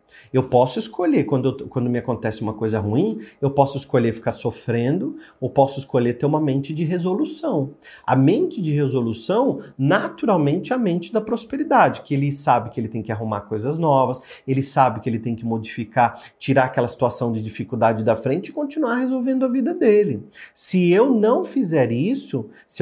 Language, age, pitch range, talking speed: Portuguese, 40-59, 125-195 Hz, 180 wpm